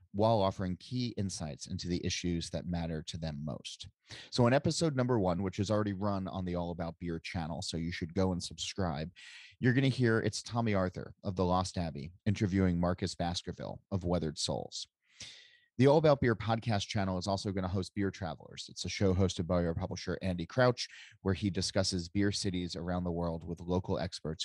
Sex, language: male, English